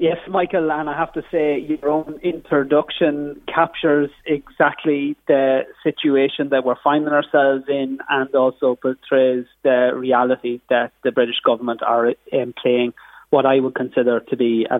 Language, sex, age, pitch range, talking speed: English, male, 30-49, 130-150 Hz, 155 wpm